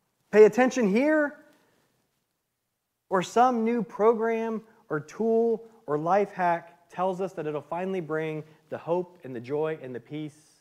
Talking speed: 155 wpm